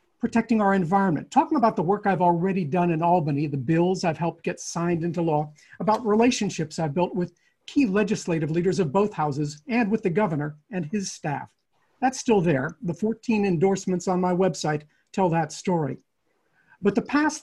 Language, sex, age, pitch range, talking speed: English, male, 50-69, 170-215 Hz, 185 wpm